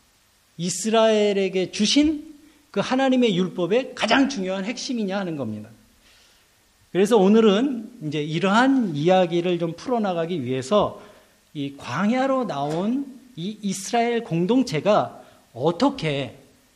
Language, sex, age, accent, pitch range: Korean, male, 40-59, native, 140-225 Hz